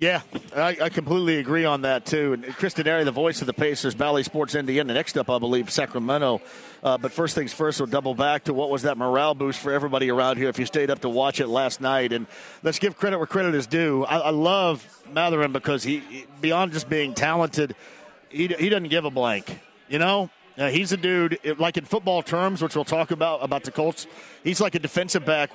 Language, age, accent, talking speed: English, 40-59, American, 230 wpm